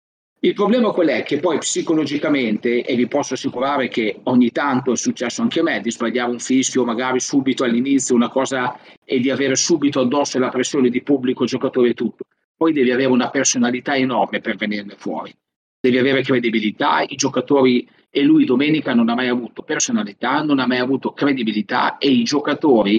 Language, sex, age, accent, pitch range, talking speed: Italian, male, 40-59, native, 120-145 Hz, 185 wpm